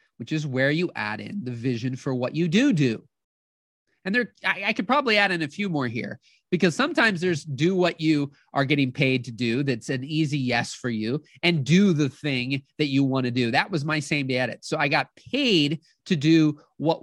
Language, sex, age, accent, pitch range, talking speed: English, male, 30-49, American, 140-195 Hz, 220 wpm